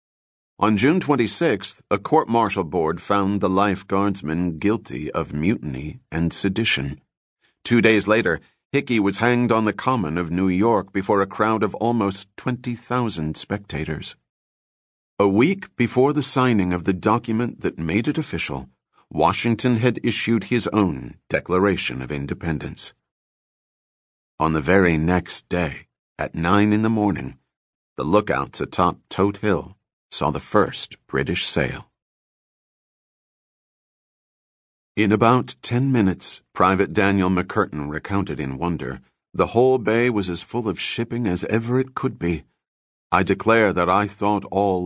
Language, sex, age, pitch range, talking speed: English, male, 40-59, 85-115 Hz, 135 wpm